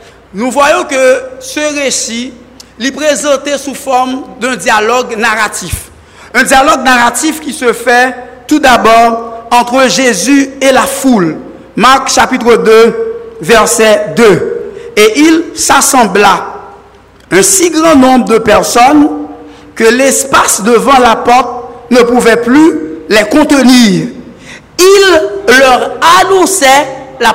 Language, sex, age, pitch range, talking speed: French, male, 60-79, 230-285 Hz, 115 wpm